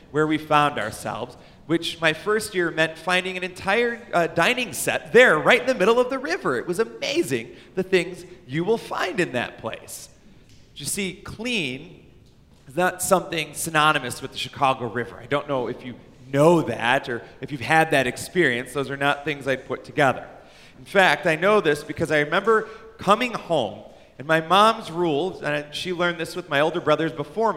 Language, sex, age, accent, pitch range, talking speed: English, male, 30-49, American, 135-185 Hz, 195 wpm